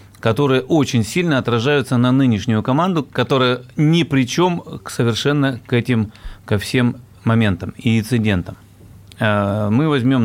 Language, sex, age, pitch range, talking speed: Russian, male, 30-49, 105-130 Hz, 125 wpm